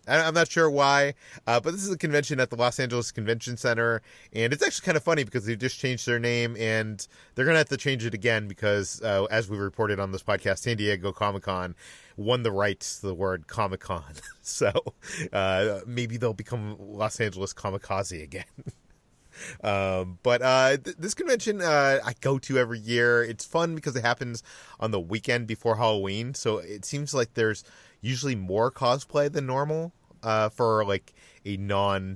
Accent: American